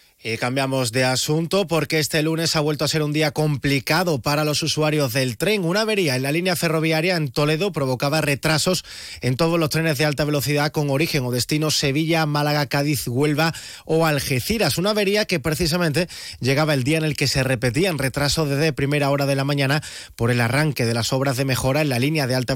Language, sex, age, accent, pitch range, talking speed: Spanish, male, 30-49, Spanish, 145-190 Hz, 205 wpm